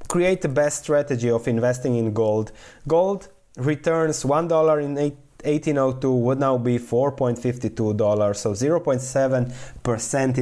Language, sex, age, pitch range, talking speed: English, male, 20-39, 110-140 Hz, 105 wpm